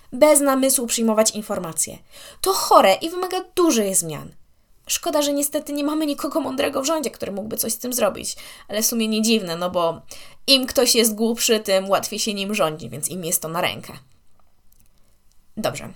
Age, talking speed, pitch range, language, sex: 20-39, 180 wpm, 195-280 Hz, Polish, female